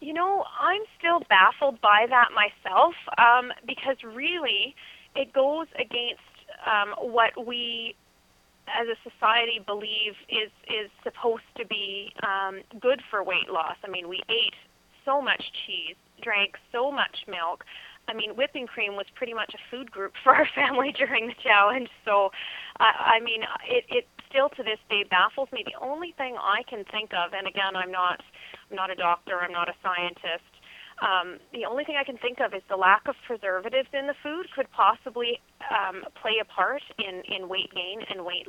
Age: 30-49